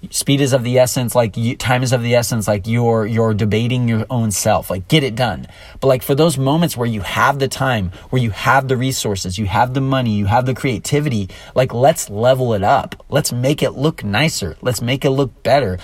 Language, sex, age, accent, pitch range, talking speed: English, male, 30-49, American, 105-145 Hz, 225 wpm